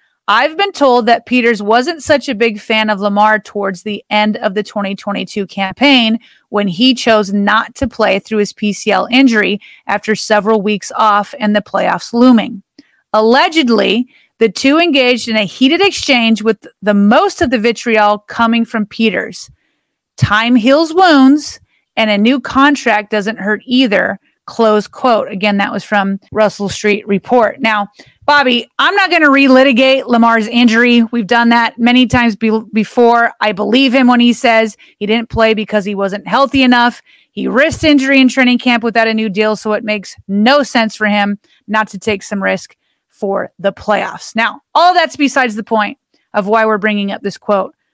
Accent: American